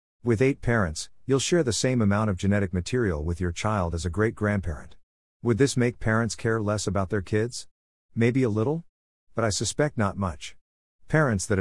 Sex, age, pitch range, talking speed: male, 50-69, 95-115 Hz, 190 wpm